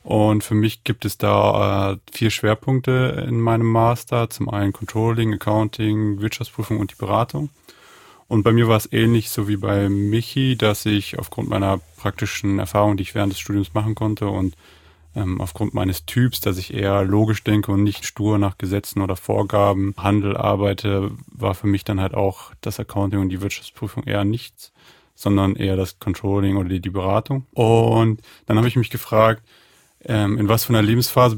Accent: German